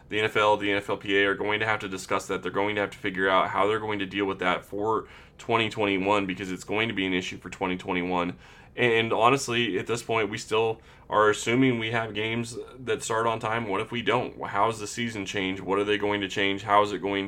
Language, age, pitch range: English, 20-39, 95-105 Hz